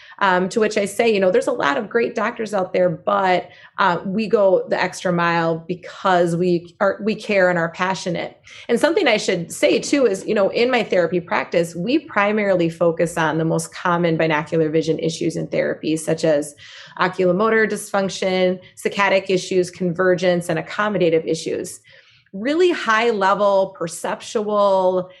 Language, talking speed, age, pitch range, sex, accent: English, 165 wpm, 30-49, 170-210 Hz, female, American